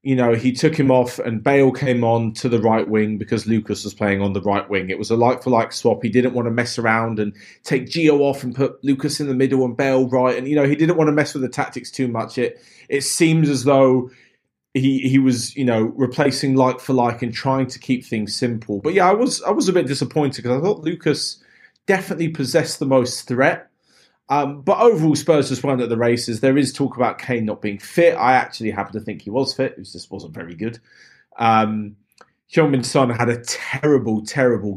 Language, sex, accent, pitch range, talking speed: English, male, British, 110-140 Hz, 230 wpm